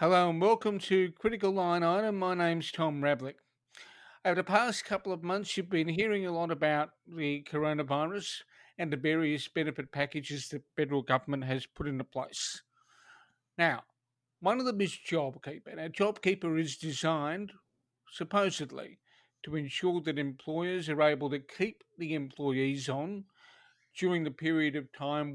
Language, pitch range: English, 140-170 Hz